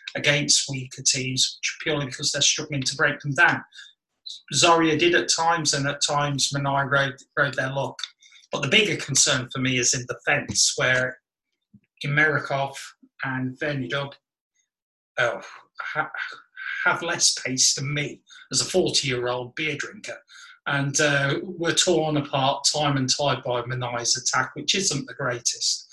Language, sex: English, male